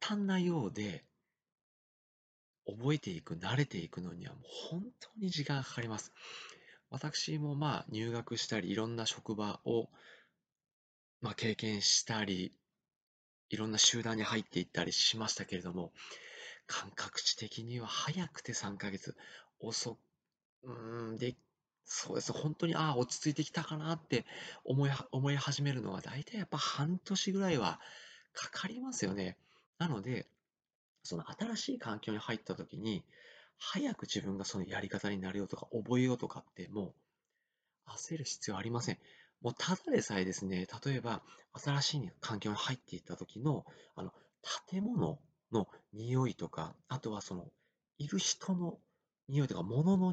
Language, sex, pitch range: Japanese, male, 105-155 Hz